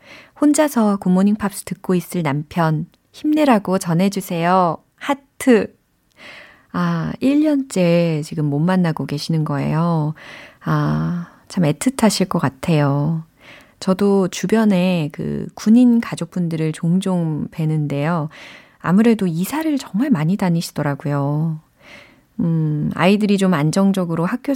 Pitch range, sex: 160-205 Hz, female